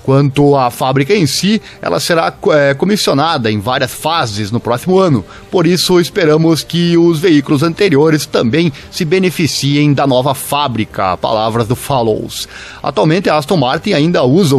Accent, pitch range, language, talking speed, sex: Brazilian, 130-165 Hz, Portuguese, 150 wpm, male